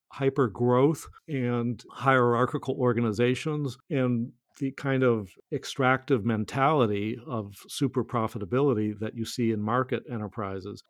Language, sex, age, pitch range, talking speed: English, male, 50-69, 110-130 Hz, 110 wpm